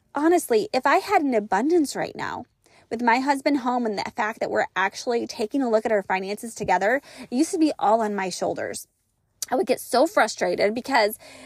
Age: 20-39